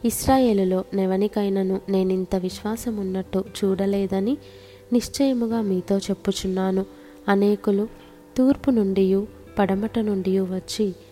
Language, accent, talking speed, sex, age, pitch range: Telugu, native, 75 wpm, female, 20-39, 190-215 Hz